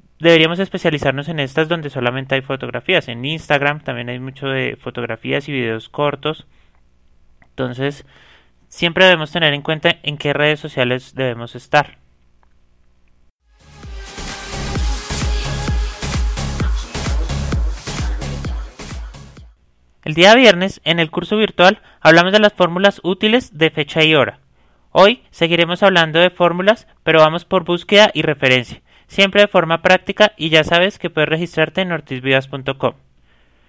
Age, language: 30-49, Spanish